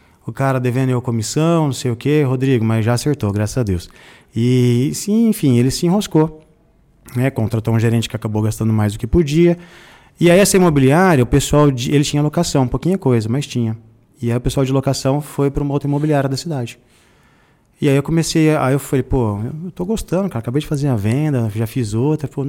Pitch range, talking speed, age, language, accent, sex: 115-155 Hz, 220 wpm, 20-39, Portuguese, Brazilian, male